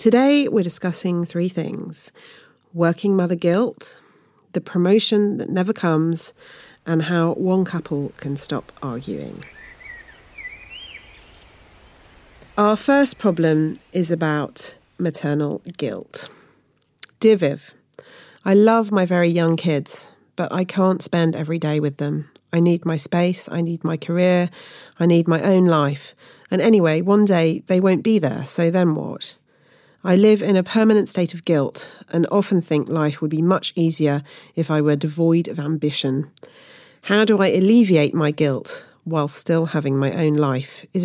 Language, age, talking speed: English, 40-59, 150 wpm